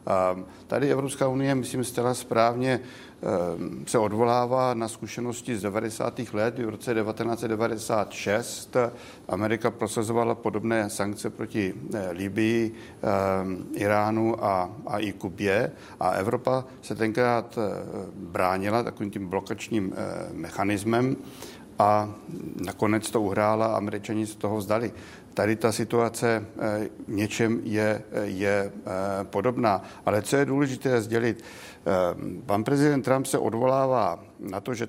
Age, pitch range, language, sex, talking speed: 60-79, 105-120 Hz, Czech, male, 110 wpm